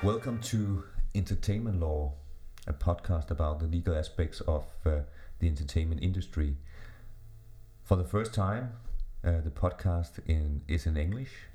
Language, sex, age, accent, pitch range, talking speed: Danish, male, 30-49, native, 75-95 Hz, 135 wpm